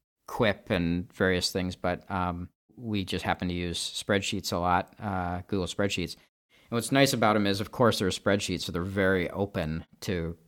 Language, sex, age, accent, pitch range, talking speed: English, male, 40-59, American, 90-110 Hz, 185 wpm